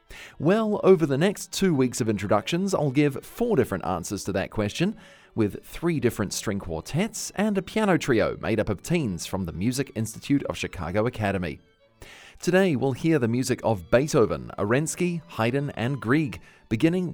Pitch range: 105-160 Hz